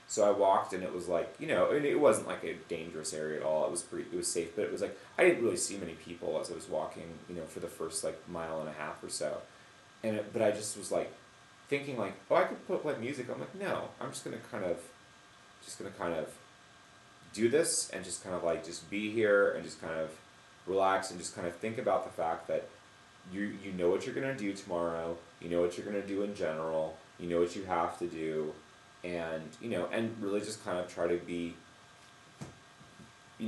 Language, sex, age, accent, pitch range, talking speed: English, male, 30-49, American, 85-110 Hz, 250 wpm